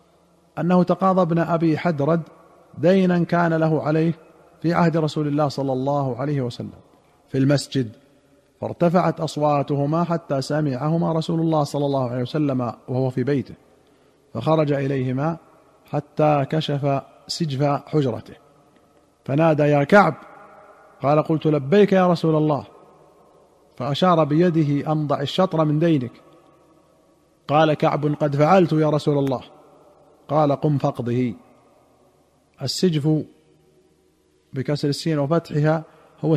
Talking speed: 110 wpm